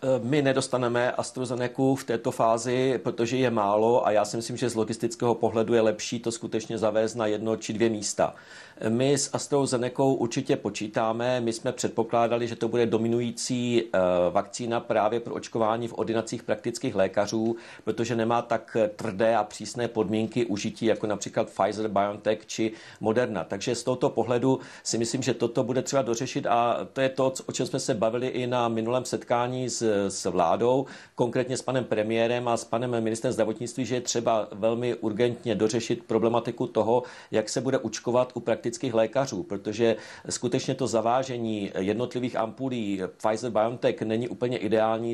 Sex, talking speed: male, 165 wpm